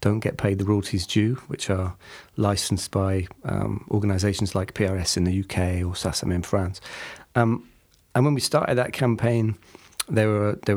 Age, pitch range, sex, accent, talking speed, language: 40-59, 100-115 Hz, male, British, 175 wpm, English